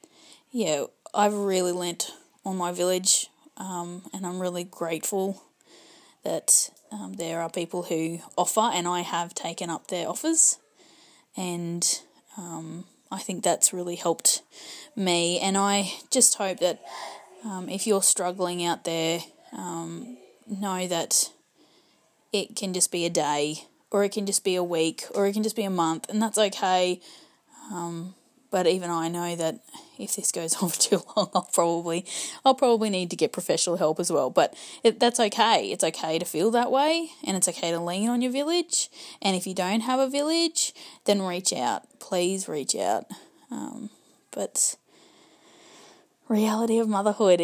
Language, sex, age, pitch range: English, female, 20-39, 175-230 Hz